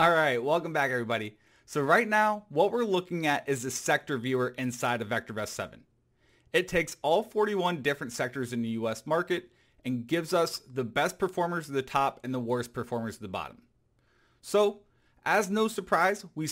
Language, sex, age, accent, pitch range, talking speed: English, male, 30-49, American, 125-170 Hz, 185 wpm